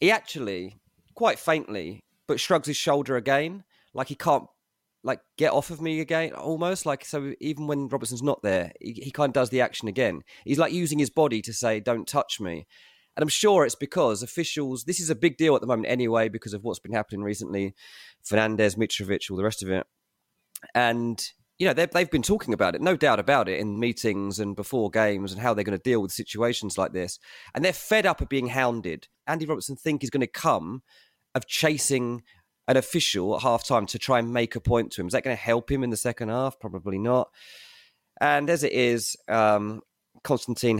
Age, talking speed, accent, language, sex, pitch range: 30-49, 210 wpm, British, English, male, 110-145 Hz